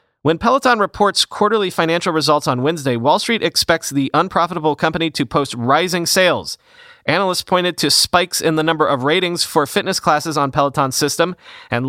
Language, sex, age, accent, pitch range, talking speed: English, male, 30-49, American, 135-175 Hz, 170 wpm